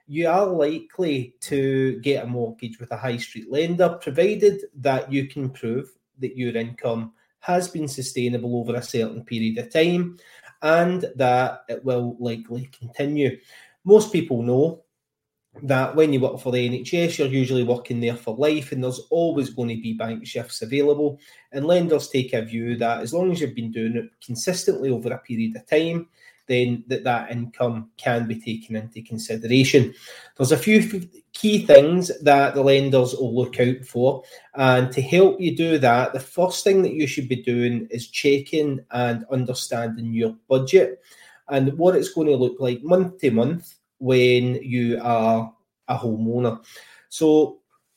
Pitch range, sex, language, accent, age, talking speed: 120-155 Hz, male, English, British, 30-49, 170 wpm